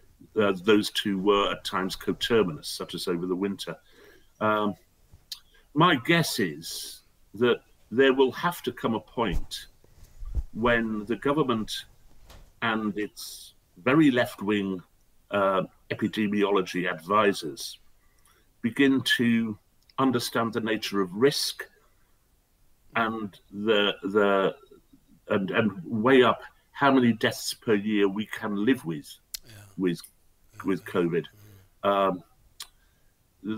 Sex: male